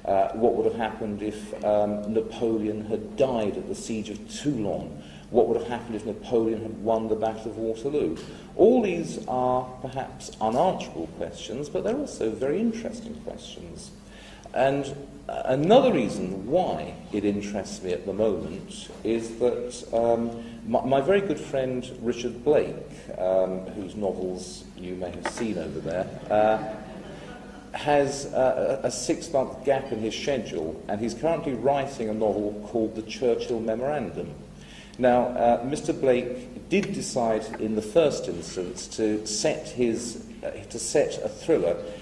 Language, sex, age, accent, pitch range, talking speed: English, male, 40-59, British, 105-130 Hz, 150 wpm